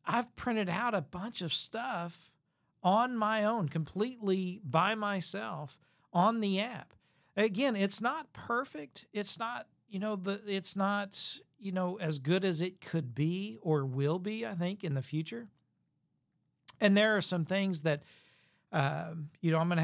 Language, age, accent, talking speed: English, 40-59, American, 165 wpm